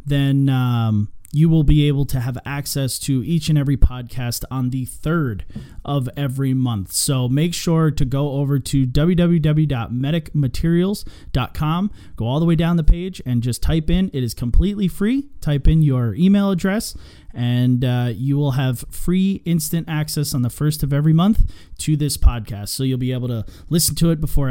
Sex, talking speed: male, 180 wpm